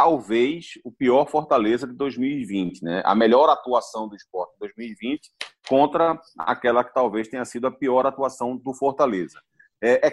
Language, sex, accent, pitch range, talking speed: Portuguese, male, Brazilian, 125-195 Hz, 155 wpm